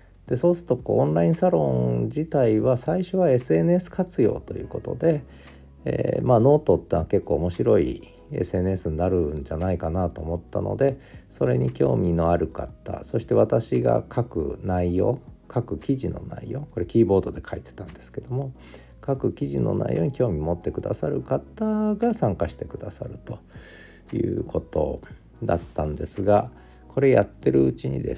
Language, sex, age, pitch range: Japanese, male, 40-59, 80-125 Hz